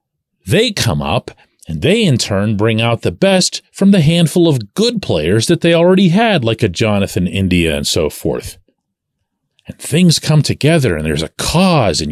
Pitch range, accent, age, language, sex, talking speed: 95-155 Hz, American, 40-59, English, male, 185 wpm